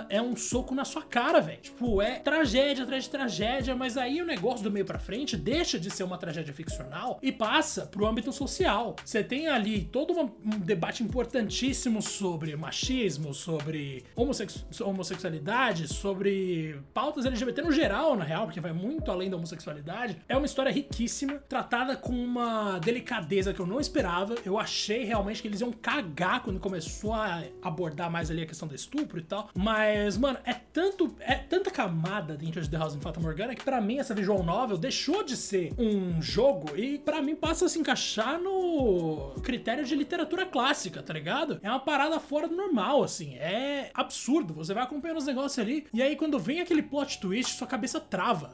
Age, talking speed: 20-39, 185 wpm